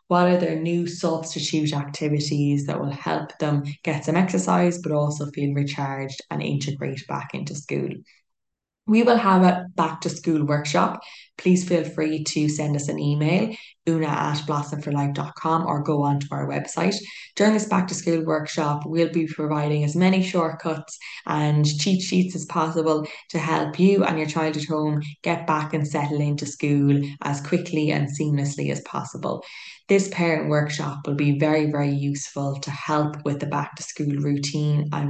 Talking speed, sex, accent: 175 wpm, female, Irish